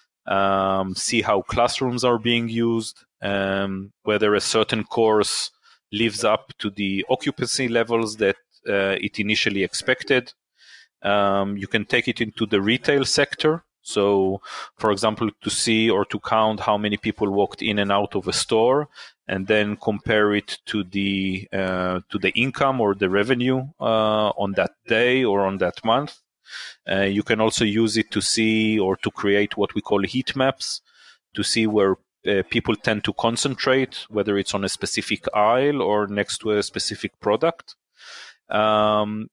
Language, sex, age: English, male, 30-49